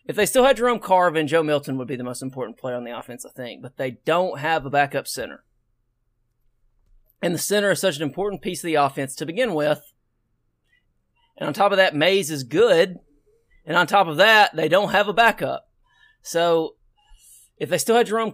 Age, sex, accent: 30-49, male, American